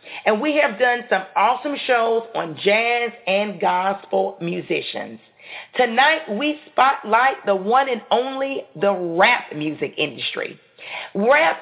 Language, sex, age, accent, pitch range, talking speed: English, female, 40-59, American, 200-280 Hz, 125 wpm